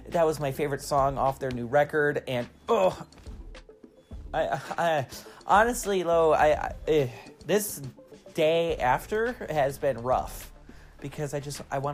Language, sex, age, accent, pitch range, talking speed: English, male, 30-49, American, 125-155 Hz, 140 wpm